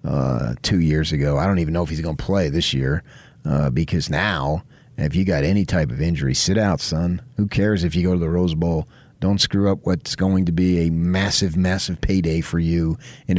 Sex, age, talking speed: male, 40-59, 225 wpm